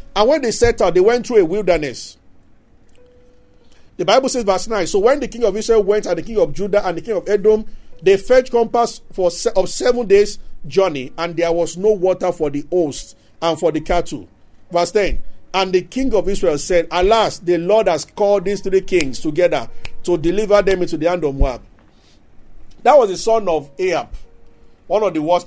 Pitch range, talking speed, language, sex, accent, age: 165-220 Hz, 205 wpm, English, male, Nigerian, 50-69